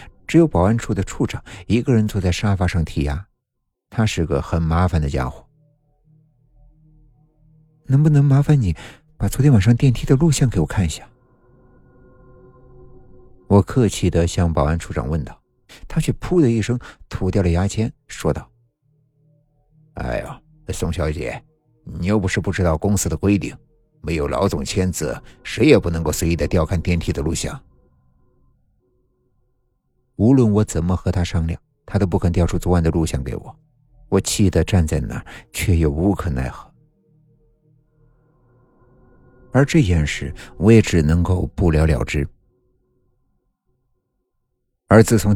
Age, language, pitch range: 50-69, Chinese, 90-130 Hz